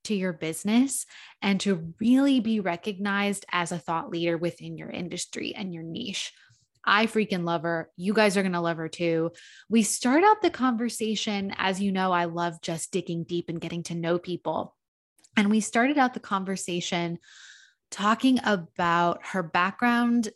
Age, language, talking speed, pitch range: 20-39, English, 170 wpm, 170-210 Hz